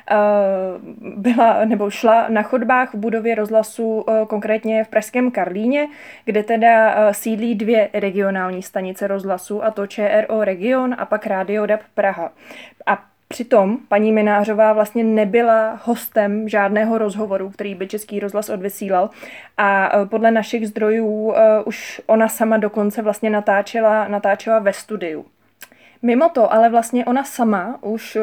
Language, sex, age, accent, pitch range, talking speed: Czech, female, 20-39, native, 205-225 Hz, 130 wpm